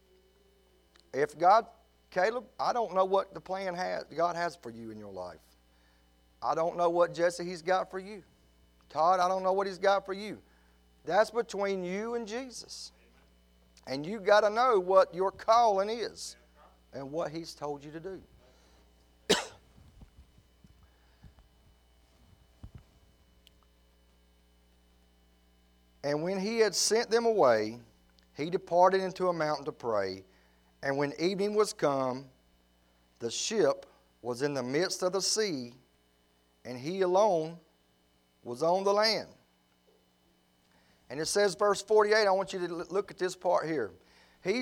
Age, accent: 40-59, American